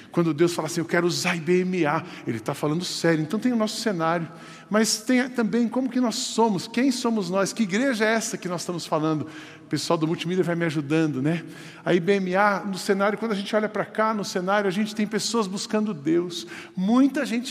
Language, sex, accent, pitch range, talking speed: Portuguese, male, Brazilian, 170-220 Hz, 215 wpm